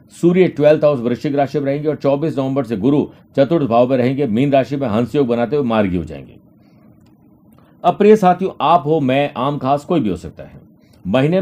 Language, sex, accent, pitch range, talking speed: Hindi, male, native, 120-150 Hz, 200 wpm